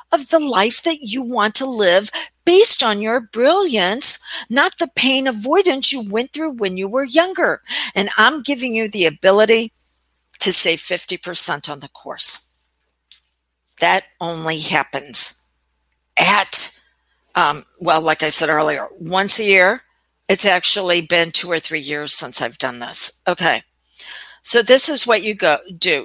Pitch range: 165-250 Hz